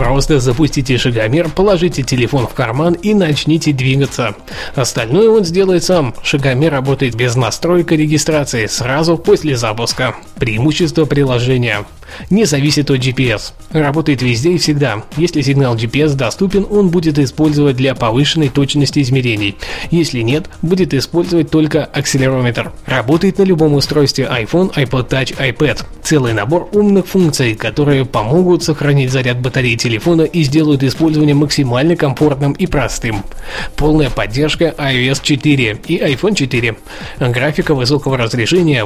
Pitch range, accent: 130-160 Hz, native